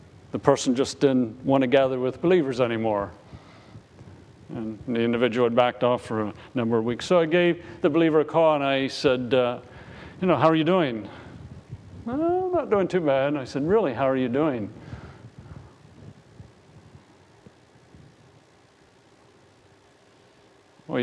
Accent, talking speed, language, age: American, 150 wpm, English, 50-69